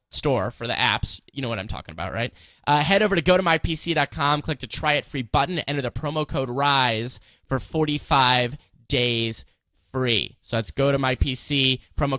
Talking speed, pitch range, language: 195 wpm, 125-160 Hz, English